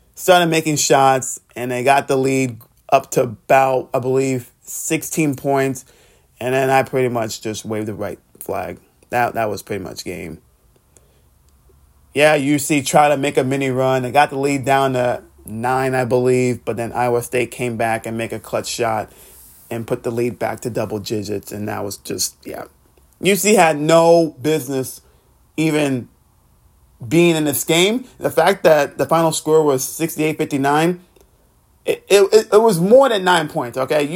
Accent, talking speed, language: American, 170 wpm, English